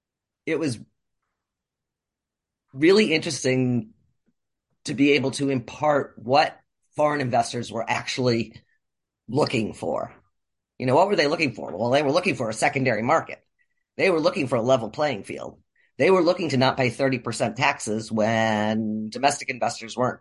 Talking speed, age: 150 wpm, 40-59